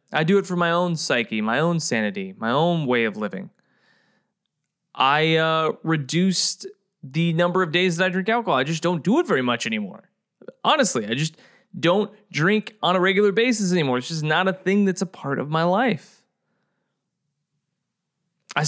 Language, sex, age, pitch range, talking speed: English, male, 20-39, 150-195 Hz, 180 wpm